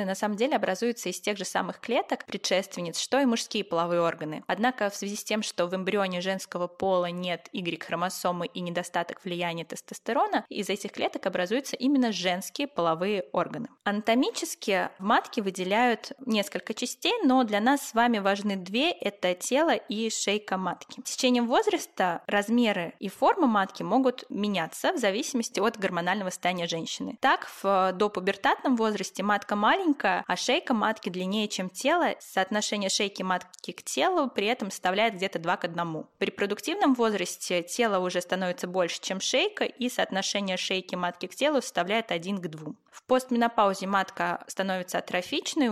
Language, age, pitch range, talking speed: Russian, 20-39, 185-240 Hz, 160 wpm